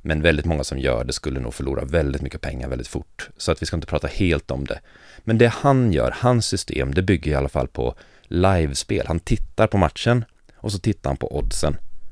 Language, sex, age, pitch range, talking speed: English, male, 30-49, 75-95 Hz, 230 wpm